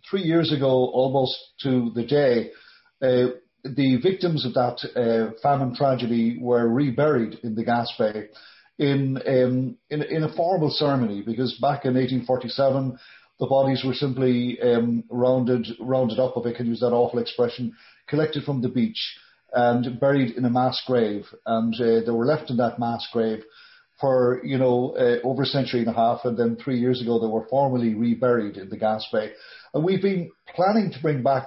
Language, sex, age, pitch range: English, male, 40-59, 120-140 Hz